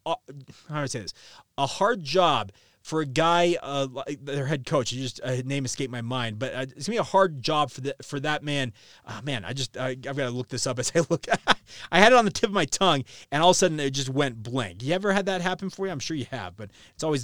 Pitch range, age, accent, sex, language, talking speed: 130-165 Hz, 30-49, American, male, English, 290 wpm